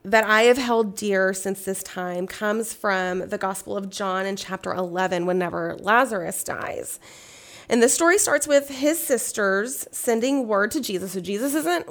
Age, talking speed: 30-49, 170 wpm